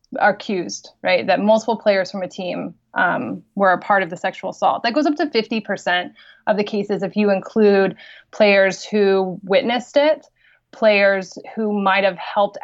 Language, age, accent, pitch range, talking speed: English, 20-39, American, 190-225 Hz, 175 wpm